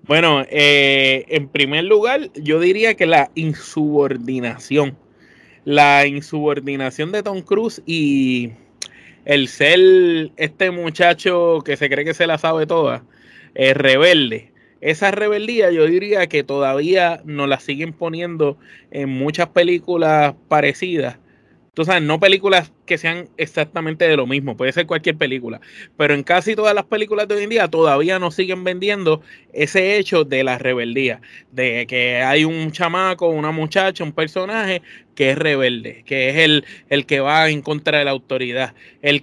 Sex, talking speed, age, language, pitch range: male, 155 wpm, 20-39, Spanish, 140-180 Hz